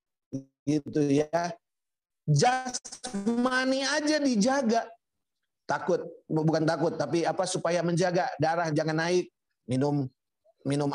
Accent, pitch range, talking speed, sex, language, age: native, 165-220 Hz, 95 wpm, male, Indonesian, 30-49